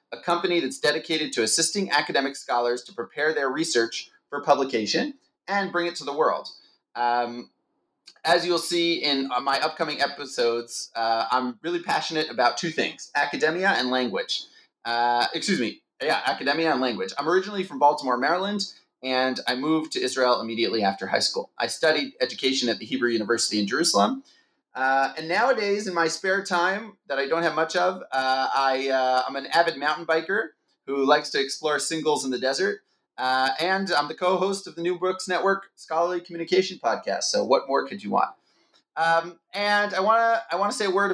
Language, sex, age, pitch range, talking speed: English, male, 30-49, 130-180 Hz, 185 wpm